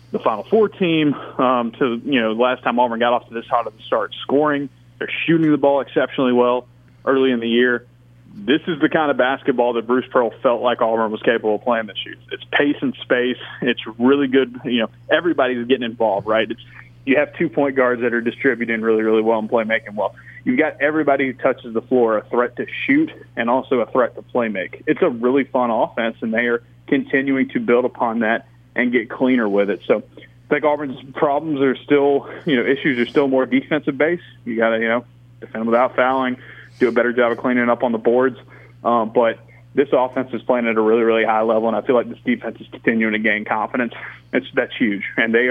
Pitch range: 115-130 Hz